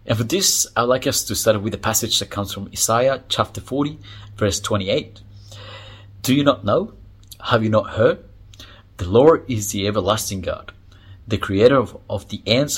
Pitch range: 95-110 Hz